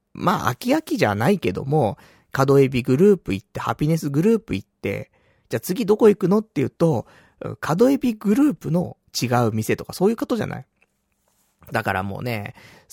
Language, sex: Japanese, male